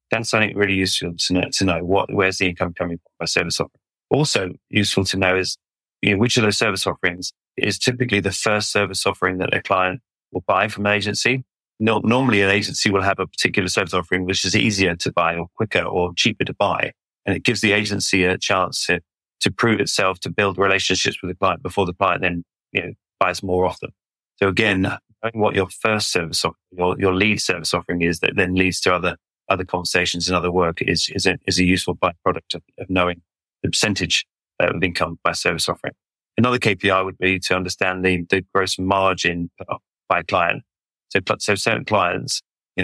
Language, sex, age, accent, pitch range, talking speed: English, male, 30-49, British, 90-100 Hz, 205 wpm